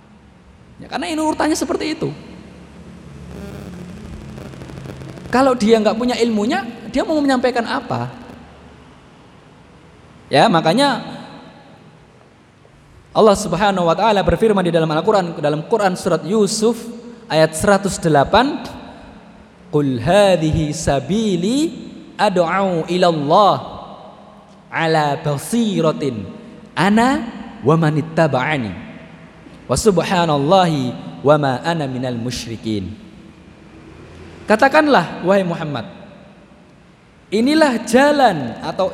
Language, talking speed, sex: Indonesian, 80 wpm, male